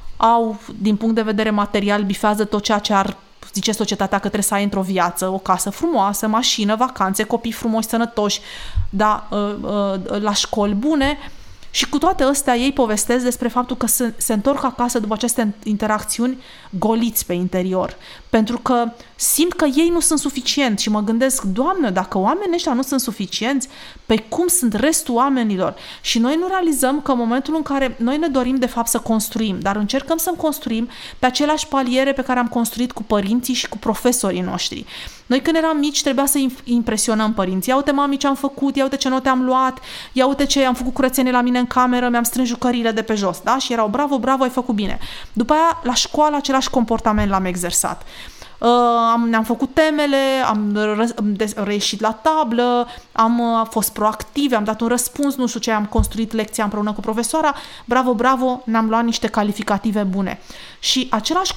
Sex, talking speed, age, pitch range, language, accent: female, 185 wpm, 30-49, 215-265 Hz, Romanian, native